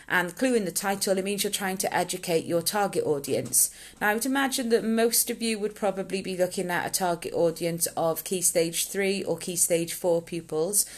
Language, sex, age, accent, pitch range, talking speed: English, female, 30-49, British, 175-215 Hz, 215 wpm